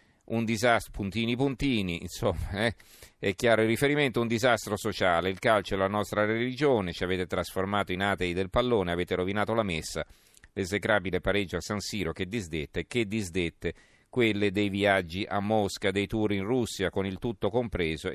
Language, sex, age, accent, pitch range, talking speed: Italian, male, 40-59, native, 90-110 Hz, 170 wpm